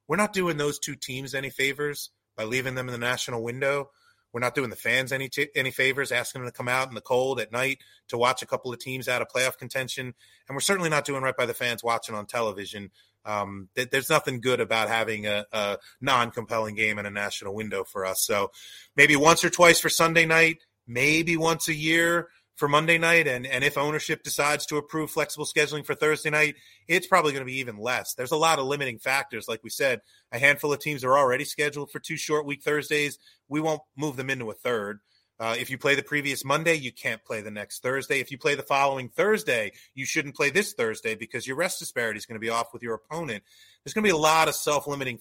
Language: English